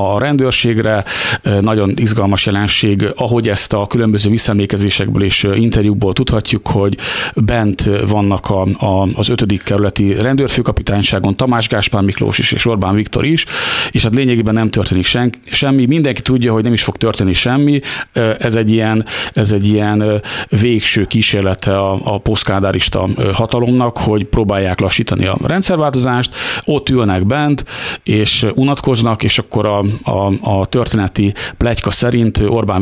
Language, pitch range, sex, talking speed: Hungarian, 100-120 Hz, male, 140 wpm